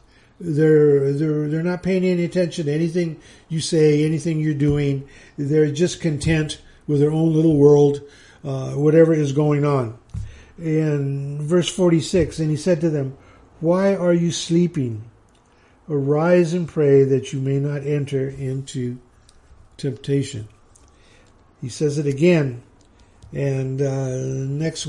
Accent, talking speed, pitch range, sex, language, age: American, 135 wpm, 130-160 Hz, male, English, 50-69